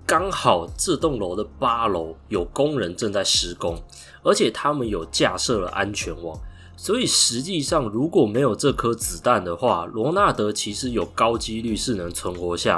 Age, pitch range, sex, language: 20-39, 85-130 Hz, male, Chinese